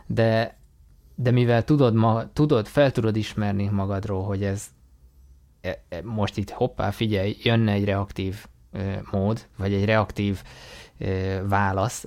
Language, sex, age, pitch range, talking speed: Hungarian, male, 20-39, 100-115 Hz, 115 wpm